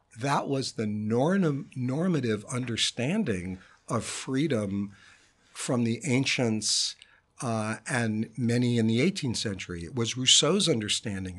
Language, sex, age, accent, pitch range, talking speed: English, male, 60-79, American, 110-155 Hz, 110 wpm